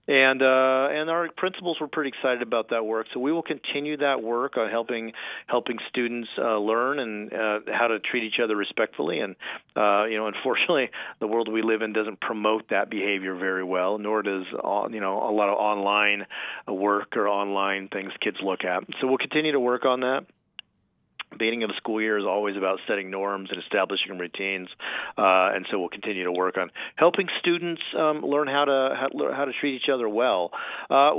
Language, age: English, 40-59